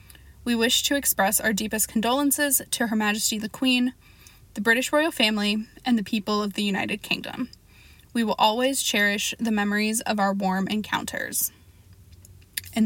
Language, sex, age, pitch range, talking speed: English, female, 10-29, 205-235 Hz, 160 wpm